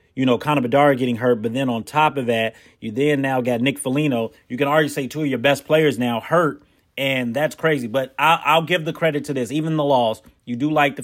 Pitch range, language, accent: 120-145 Hz, English, American